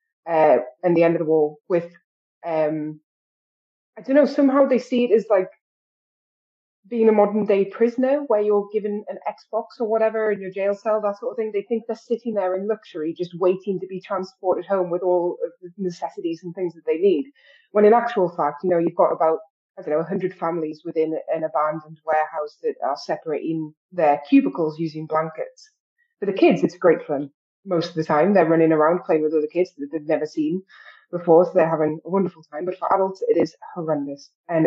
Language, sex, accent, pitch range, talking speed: English, female, British, 160-210 Hz, 210 wpm